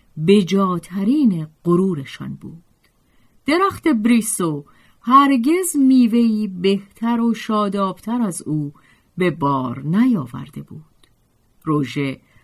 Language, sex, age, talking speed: Persian, female, 40-59, 85 wpm